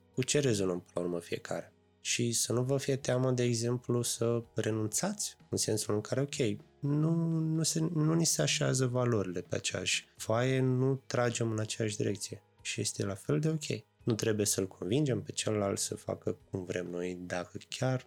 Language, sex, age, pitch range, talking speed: Romanian, male, 20-39, 95-130 Hz, 190 wpm